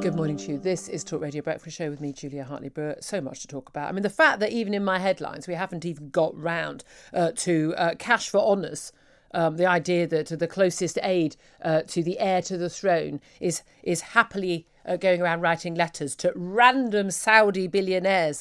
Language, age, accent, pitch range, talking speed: English, 50-69, British, 160-230 Hz, 210 wpm